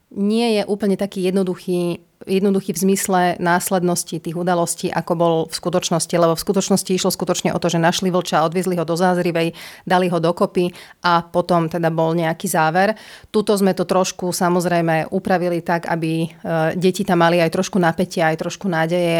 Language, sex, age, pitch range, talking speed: Slovak, female, 30-49, 175-195 Hz, 170 wpm